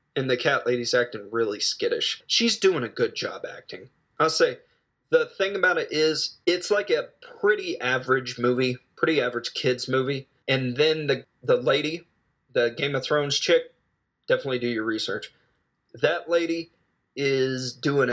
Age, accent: 30-49, American